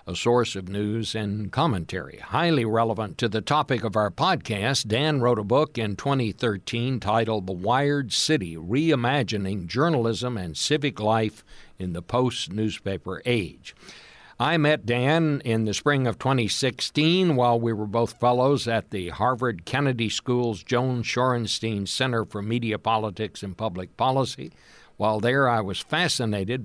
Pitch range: 105-130 Hz